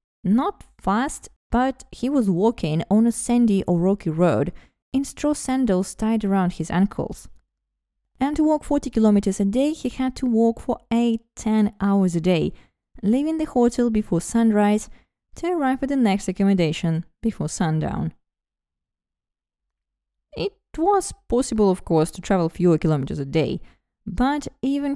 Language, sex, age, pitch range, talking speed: English, female, 20-39, 180-250 Hz, 145 wpm